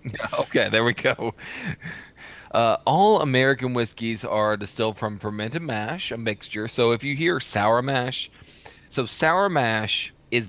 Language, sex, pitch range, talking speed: English, male, 95-115 Hz, 145 wpm